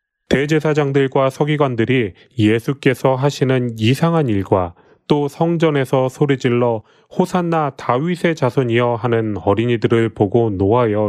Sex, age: male, 30-49